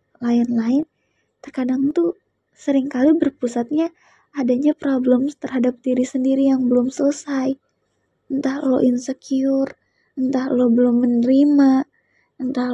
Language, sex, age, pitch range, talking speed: Indonesian, female, 20-39, 230-275 Hz, 100 wpm